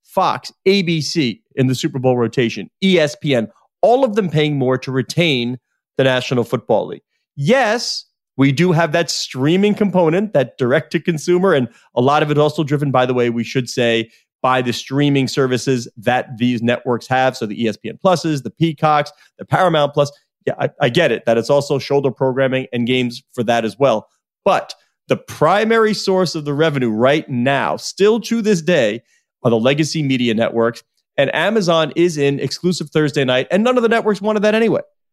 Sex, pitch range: male, 125-170 Hz